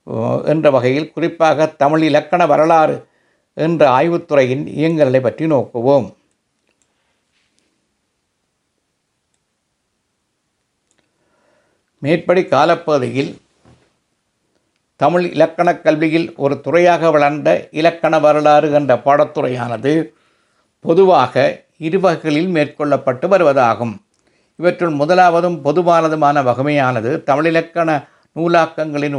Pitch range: 140-165 Hz